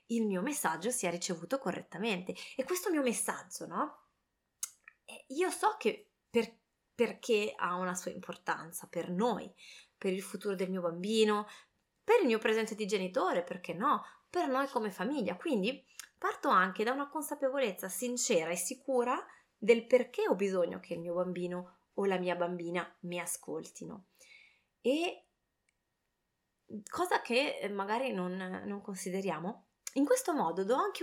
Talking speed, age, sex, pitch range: 145 wpm, 20-39, female, 180-265 Hz